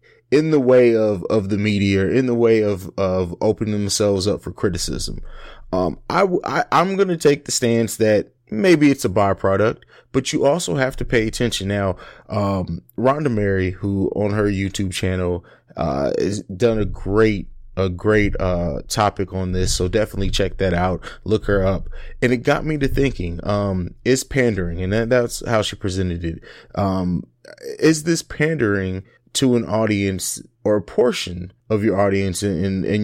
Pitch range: 95-120 Hz